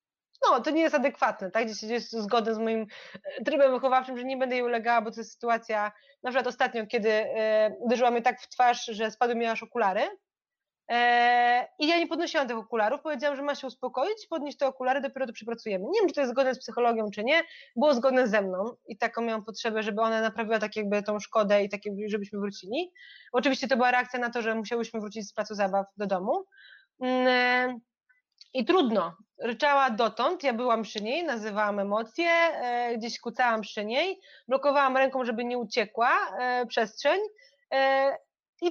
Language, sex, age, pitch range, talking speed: Polish, female, 20-39, 225-280 Hz, 190 wpm